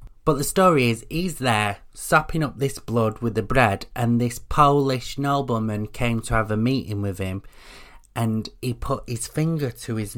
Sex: male